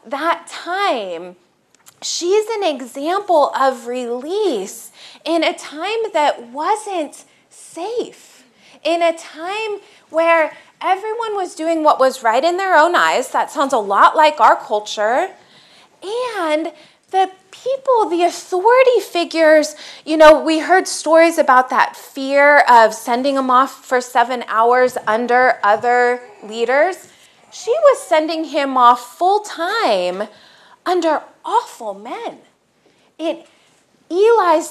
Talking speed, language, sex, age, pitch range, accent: 120 wpm, English, female, 20-39, 260-360 Hz, American